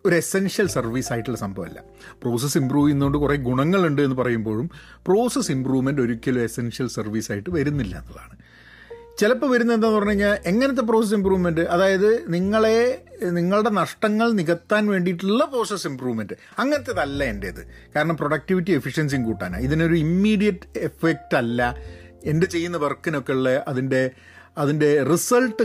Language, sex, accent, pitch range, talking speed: Malayalam, male, native, 135-215 Hz, 120 wpm